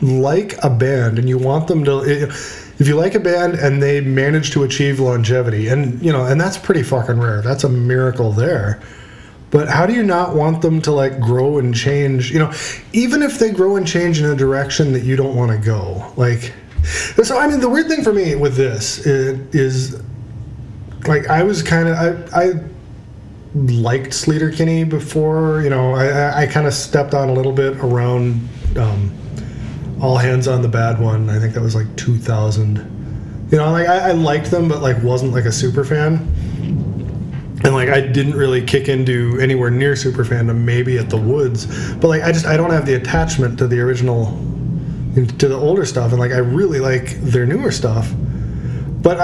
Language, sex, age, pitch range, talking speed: English, male, 30-49, 125-155 Hz, 200 wpm